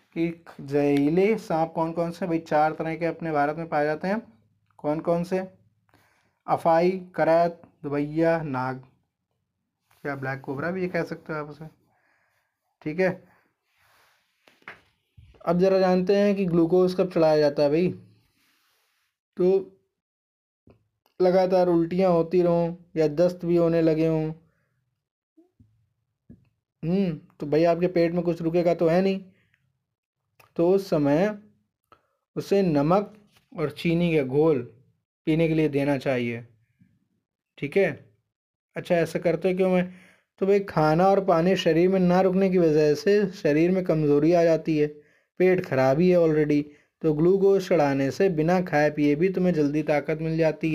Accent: native